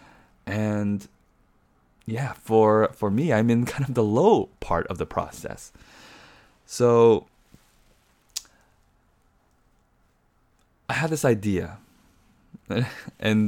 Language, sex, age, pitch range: English, male, 20-39, 90-115 Hz